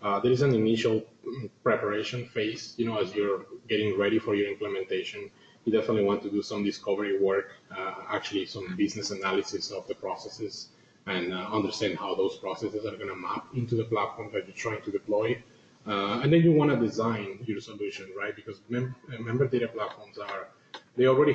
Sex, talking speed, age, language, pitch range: male, 190 wpm, 30-49, English, 105-150 Hz